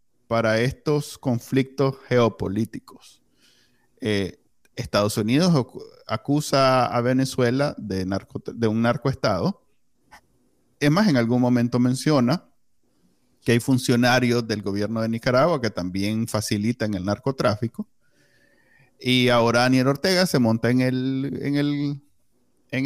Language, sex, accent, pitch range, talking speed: Spanish, male, Venezuelan, 115-140 Hz, 110 wpm